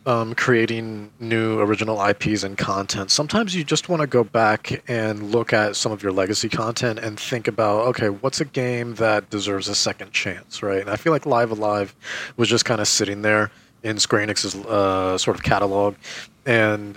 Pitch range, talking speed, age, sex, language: 100-125 Hz, 195 wpm, 30-49, male, English